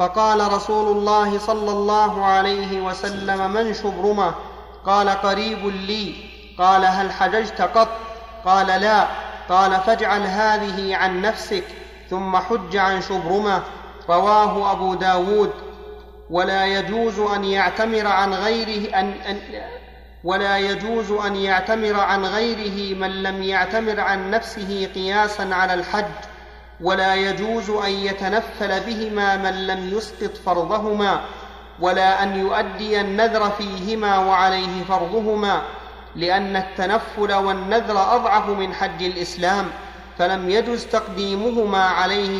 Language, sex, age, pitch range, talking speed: Arabic, male, 40-59, 190-220 Hz, 100 wpm